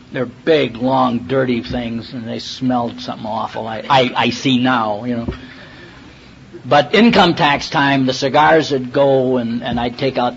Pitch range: 120-150 Hz